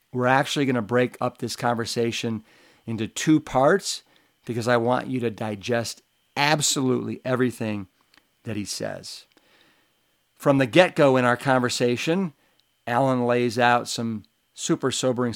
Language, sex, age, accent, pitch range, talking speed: English, male, 50-69, American, 115-135 Hz, 135 wpm